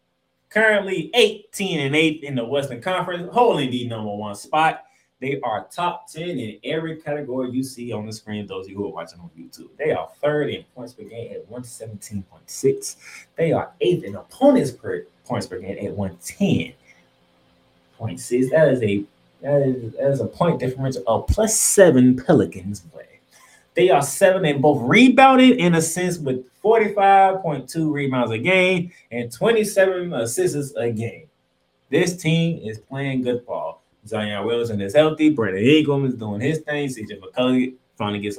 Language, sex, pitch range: English, male, 110-170 Hz